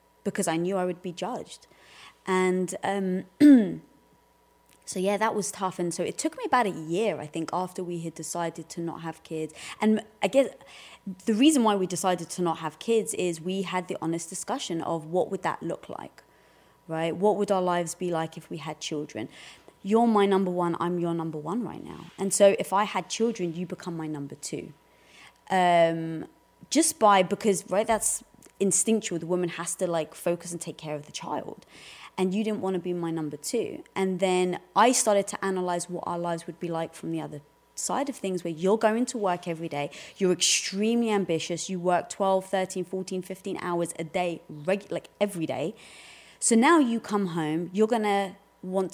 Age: 20-39